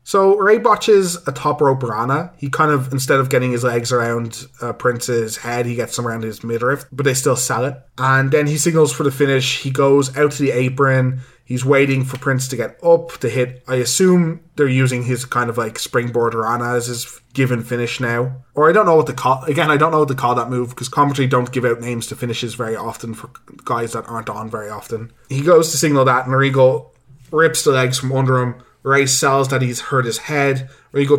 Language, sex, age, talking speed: English, male, 20-39, 235 wpm